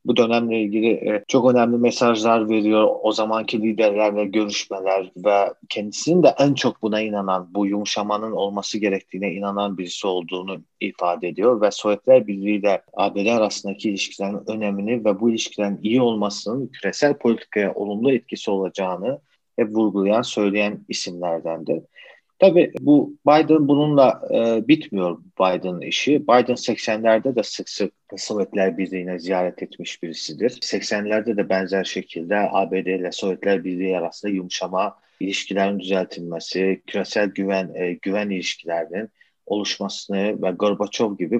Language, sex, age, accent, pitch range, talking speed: Turkish, male, 40-59, native, 95-115 Hz, 130 wpm